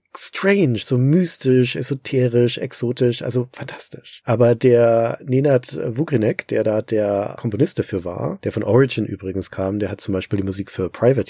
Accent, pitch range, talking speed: German, 105-135 Hz, 160 wpm